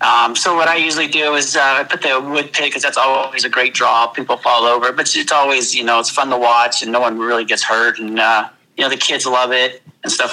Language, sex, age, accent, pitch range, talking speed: English, male, 40-59, American, 130-155 Hz, 275 wpm